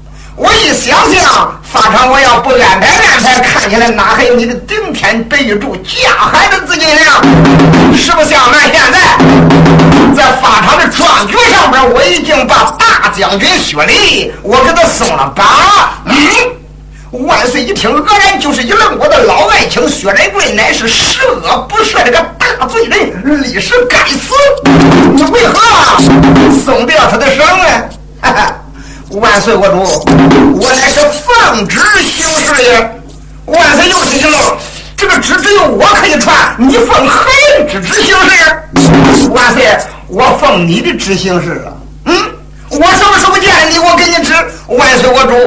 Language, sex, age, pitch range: Chinese, male, 50-69, 230-365 Hz